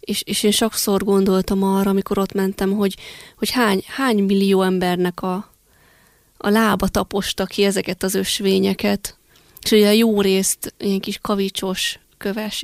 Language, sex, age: Hungarian, female, 20-39